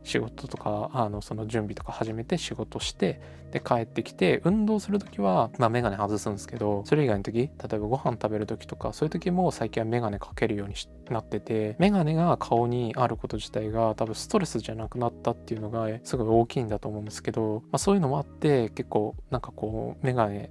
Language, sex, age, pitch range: Japanese, male, 20-39, 105-130 Hz